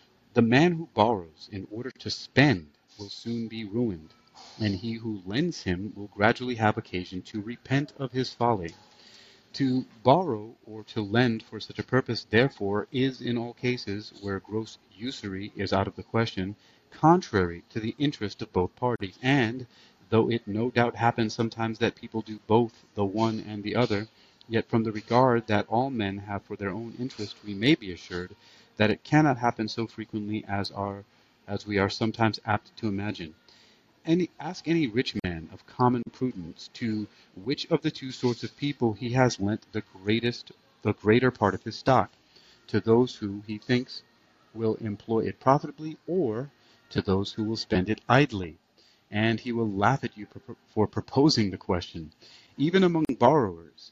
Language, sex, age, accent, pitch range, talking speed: English, male, 30-49, American, 105-125 Hz, 175 wpm